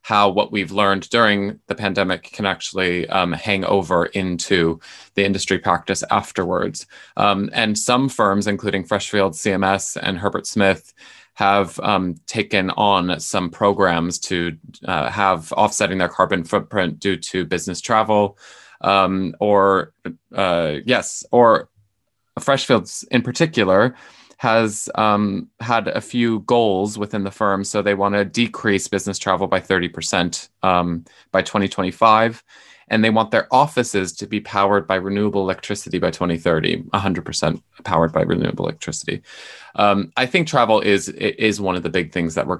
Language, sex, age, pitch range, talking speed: English, male, 20-39, 90-105 Hz, 145 wpm